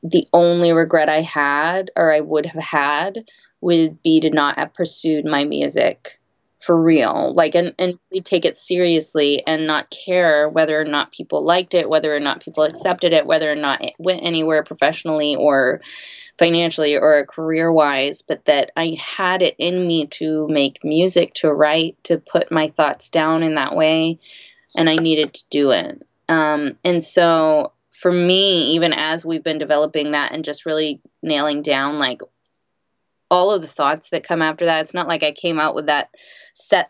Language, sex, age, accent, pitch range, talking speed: English, female, 20-39, American, 150-170 Hz, 185 wpm